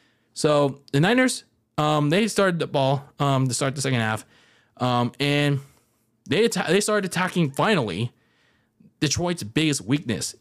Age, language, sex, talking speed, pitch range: 20-39, English, male, 145 wpm, 120-155 Hz